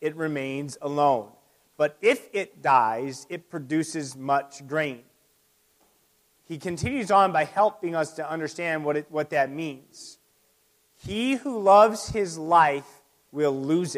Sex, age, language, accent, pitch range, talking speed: male, 30-49, English, American, 150-215 Hz, 135 wpm